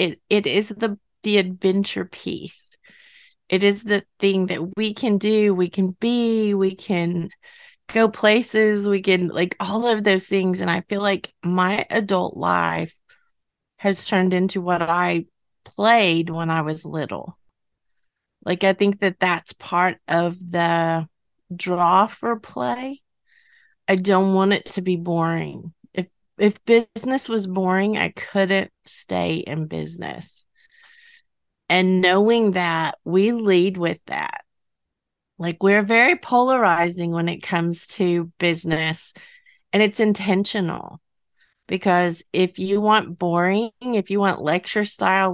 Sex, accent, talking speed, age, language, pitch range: female, American, 135 wpm, 30-49, English, 175-215 Hz